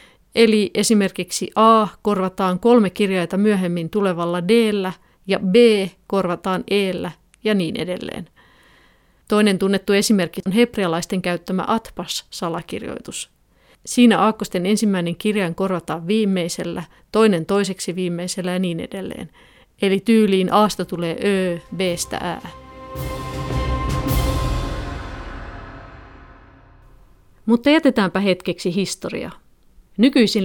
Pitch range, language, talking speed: 175-210 Hz, Finnish, 95 wpm